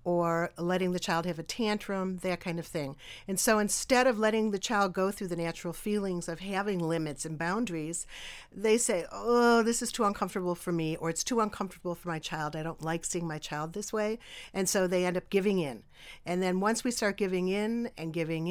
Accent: American